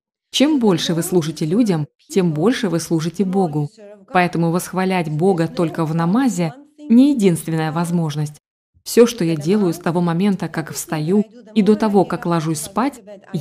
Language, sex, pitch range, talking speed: Russian, female, 170-220 Hz, 150 wpm